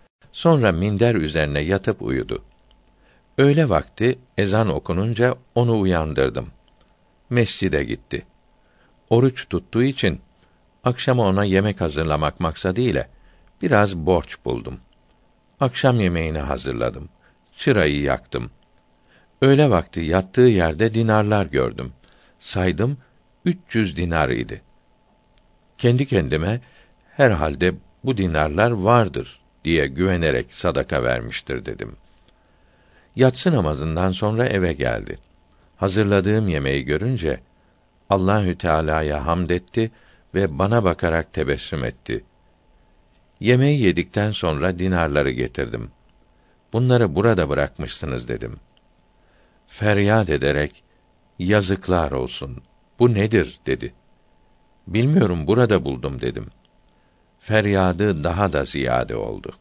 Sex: male